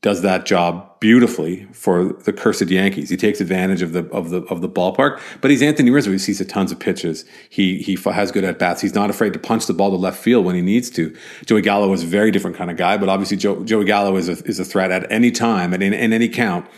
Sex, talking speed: male, 260 wpm